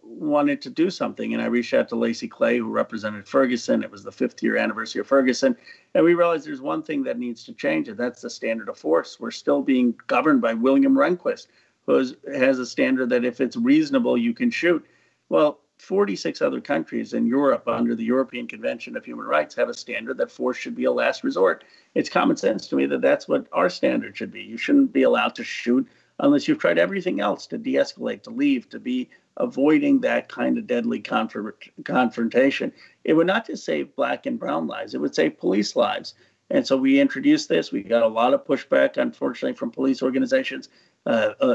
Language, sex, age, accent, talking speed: English, male, 50-69, American, 210 wpm